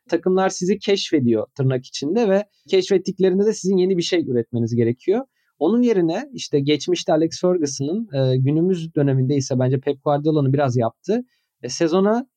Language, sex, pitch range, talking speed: Turkish, male, 140-195 Hz, 150 wpm